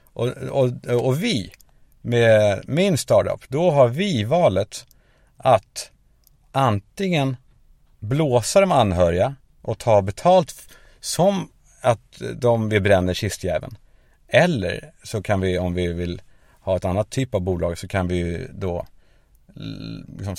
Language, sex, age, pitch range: Swedish, male, 50-69, 90-135 Hz